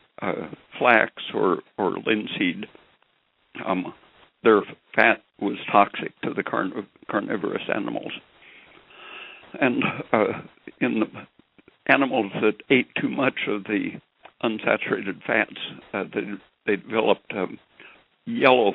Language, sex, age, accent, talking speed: English, male, 60-79, American, 110 wpm